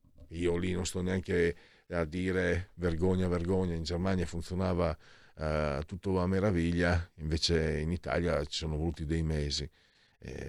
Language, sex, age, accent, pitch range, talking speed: Italian, male, 50-69, native, 85-120 Hz, 145 wpm